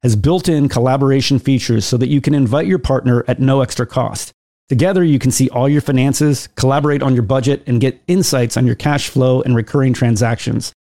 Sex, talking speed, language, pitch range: male, 205 wpm, English, 125-150 Hz